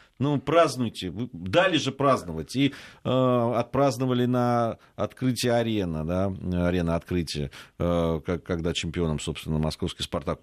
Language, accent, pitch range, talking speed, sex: Russian, native, 95-135 Hz, 115 wpm, male